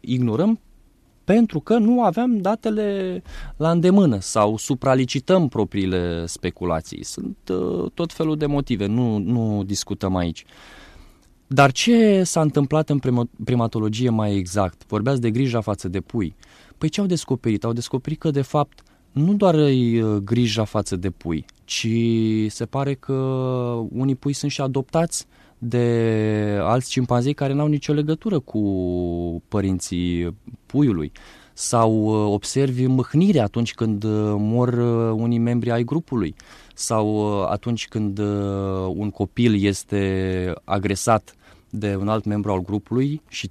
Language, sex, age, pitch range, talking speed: Romanian, male, 20-39, 105-150 Hz, 135 wpm